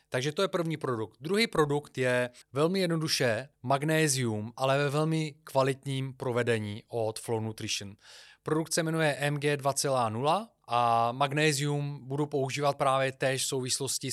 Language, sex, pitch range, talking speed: Czech, male, 115-145 Hz, 135 wpm